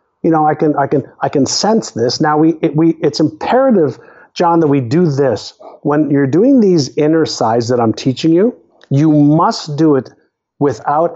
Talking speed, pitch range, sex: 195 wpm, 140-185 Hz, male